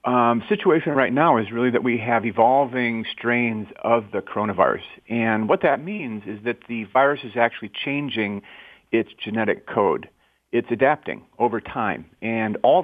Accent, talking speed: American, 160 wpm